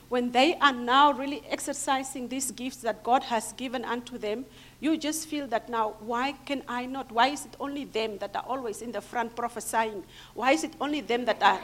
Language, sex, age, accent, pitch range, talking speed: English, female, 50-69, South African, 230-295 Hz, 215 wpm